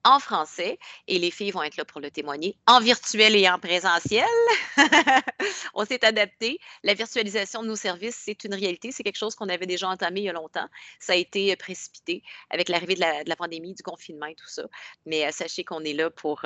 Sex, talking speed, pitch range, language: female, 220 wpm, 185-240 Hz, French